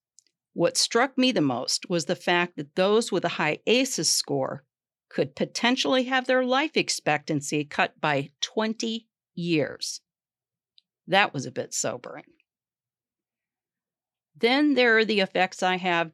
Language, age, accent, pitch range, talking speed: English, 50-69, American, 165-230 Hz, 140 wpm